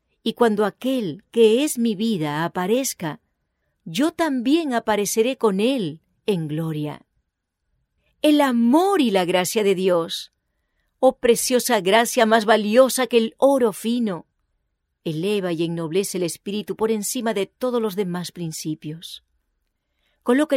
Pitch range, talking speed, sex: 165-230 Hz, 130 wpm, female